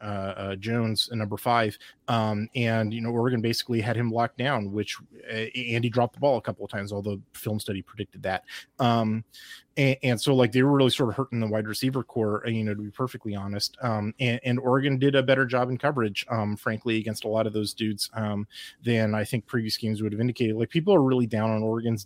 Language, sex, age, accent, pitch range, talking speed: English, male, 30-49, American, 110-130 Hz, 235 wpm